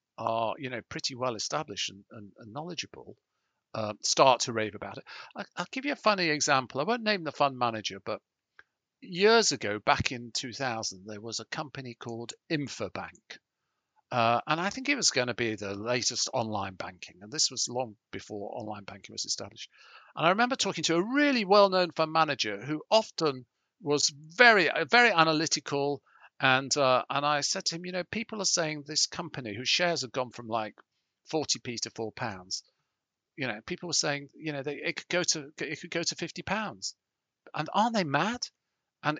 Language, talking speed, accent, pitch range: English, 195 wpm, British, 120-170 Hz